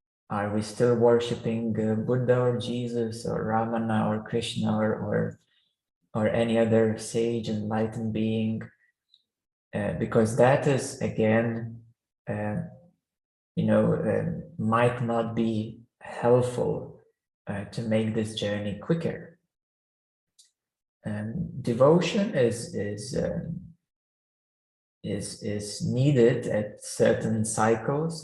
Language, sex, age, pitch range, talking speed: English, male, 20-39, 110-130 Hz, 95 wpm